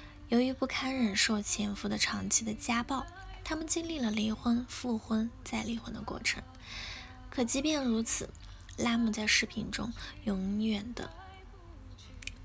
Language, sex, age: Chinese, female, 10-29